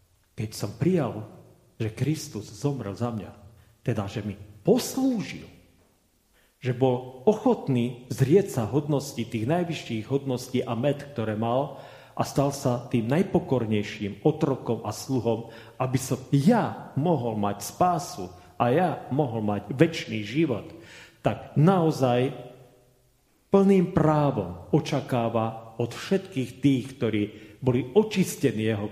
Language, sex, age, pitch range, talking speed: Slovak, male, 40-59, 120-170 Hz, 120 wpm